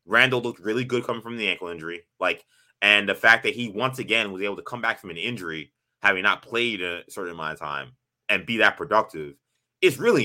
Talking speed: 230 wpm